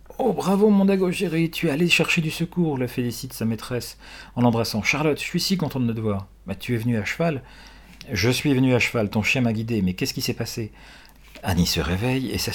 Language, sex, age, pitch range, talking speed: French, male, 40-59, 100-130 Hz, 265 wpm